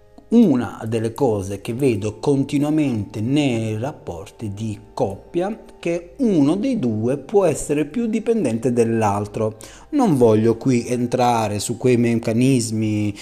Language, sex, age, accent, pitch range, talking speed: Italian, male, 30-49, native, 110-150 Hz, 125 wpm